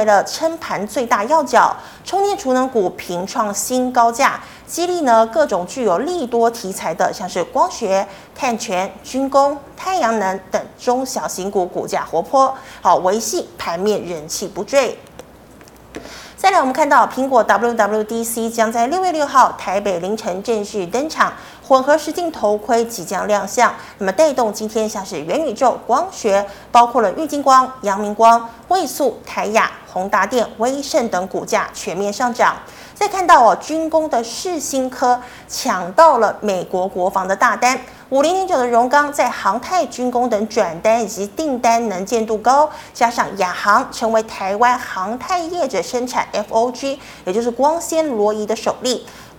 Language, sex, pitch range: Chinese, female, 210-280 Hz